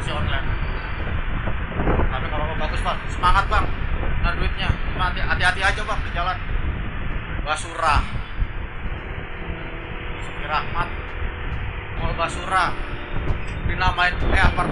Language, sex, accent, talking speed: Indonesian, male, native, 100 wpm